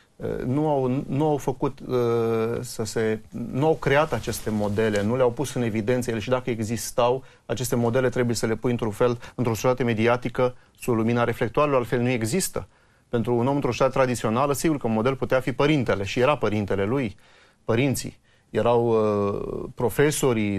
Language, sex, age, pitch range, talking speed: Romanian, male, 30-49, 115-130 Hz, 170 wpm